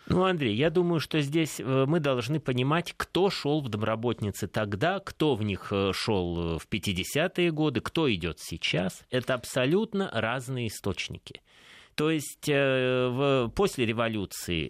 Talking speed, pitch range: 130 wpm, 100-145 Hz